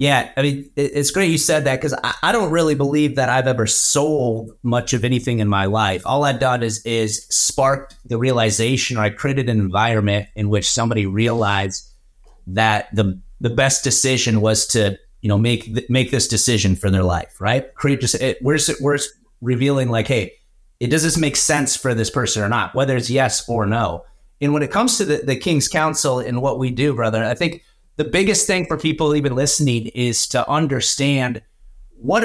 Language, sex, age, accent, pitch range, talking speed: English, male, 30-49, American, 110-145 Hz, 200 wpm